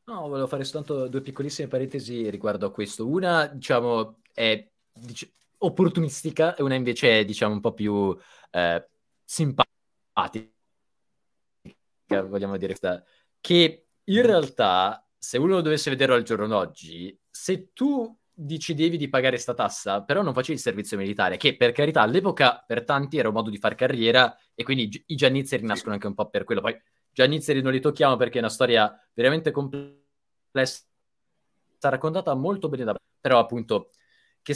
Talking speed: 160 wpm